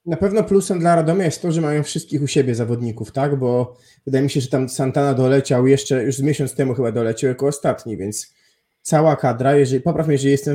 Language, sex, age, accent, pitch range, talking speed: Polish, male, 20-39, native, 130-150 Hz, 230 wpm